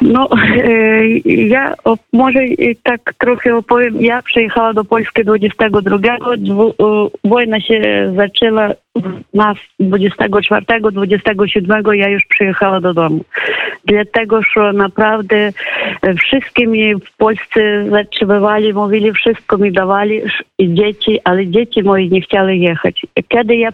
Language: Polish